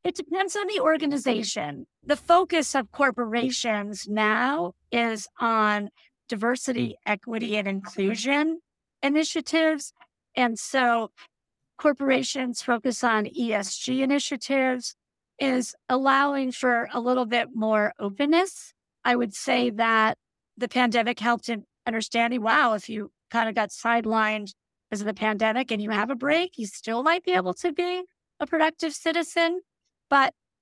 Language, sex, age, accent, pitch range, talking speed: English, female, 50-69, American, 220-280 Hz, 135 wpm